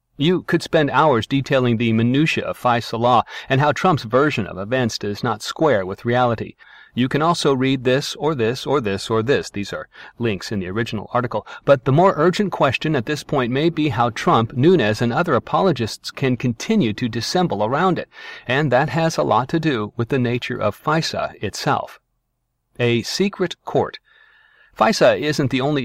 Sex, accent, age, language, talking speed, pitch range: male, American, 40-59, English, 190 wpm, 115-150 Hz